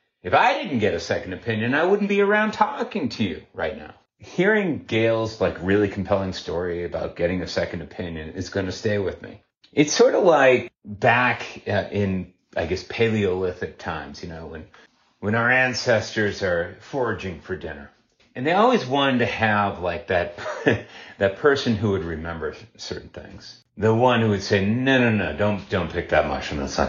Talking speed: 185 wpm